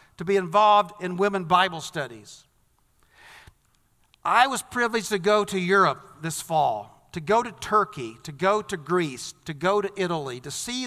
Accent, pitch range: American, 155-215 Hz